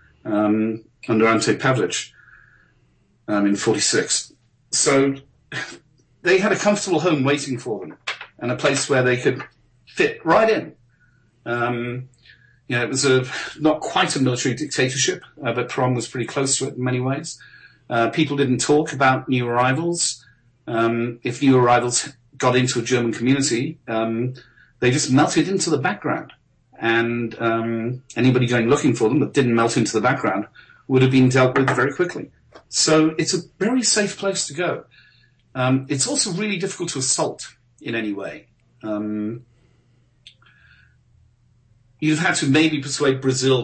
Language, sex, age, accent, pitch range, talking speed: English, male, 40-59, British, 115-145 Hz, 160 wpm